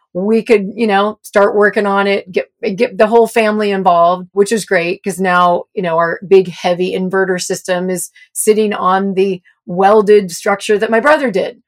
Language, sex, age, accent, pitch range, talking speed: English, female, 40-59, American, 195-240 Hz, 185 wpm